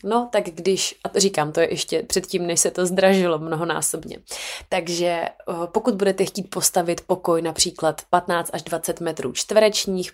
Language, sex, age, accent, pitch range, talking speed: Czech, female, 20-39, native, 170-195 Hz, 165 wpm